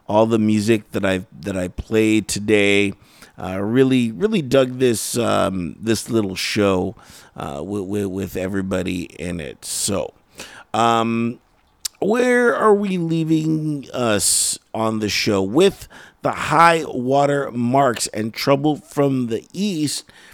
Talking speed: 130 wpm